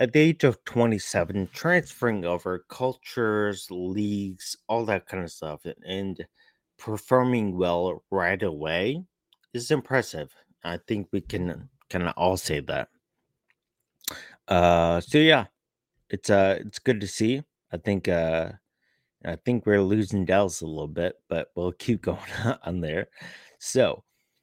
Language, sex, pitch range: English, male, 95-125 Hz